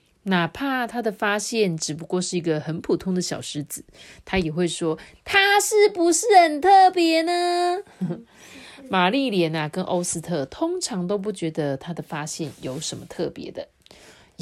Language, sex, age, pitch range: Chinese, female, 30-49, 160-230 Hz